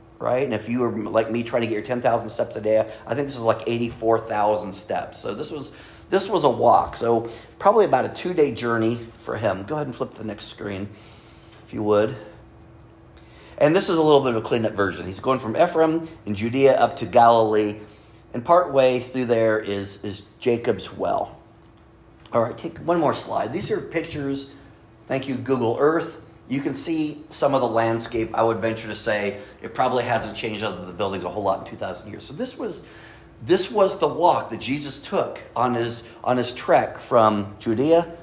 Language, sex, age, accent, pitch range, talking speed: English, male, 40-59, American, 110-140 Hz, 205 wpm